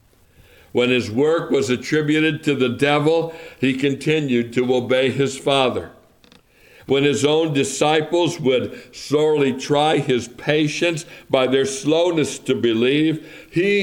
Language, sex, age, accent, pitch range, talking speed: English, male, 60-79, American, 115-140 Hz, 125 wpm